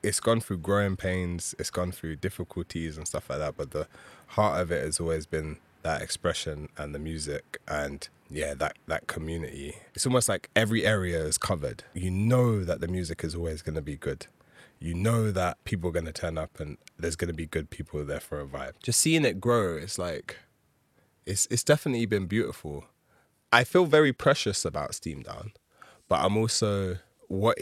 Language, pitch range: English, 85-110 Hz